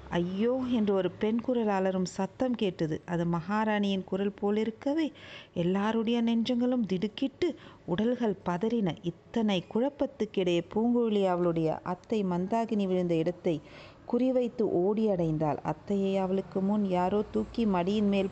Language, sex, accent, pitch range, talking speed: Tamil, female, native, 180-225 Hz, 110 wpm